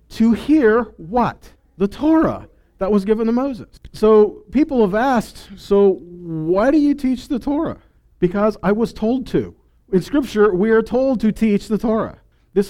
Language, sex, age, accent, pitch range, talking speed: English, male, 50-69, American, 180-230 Hz, 170 wpm